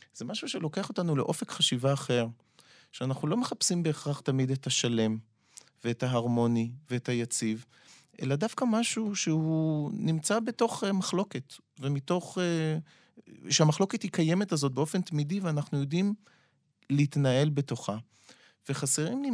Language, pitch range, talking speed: Hebrew, 135-180 Hz, 120 wpm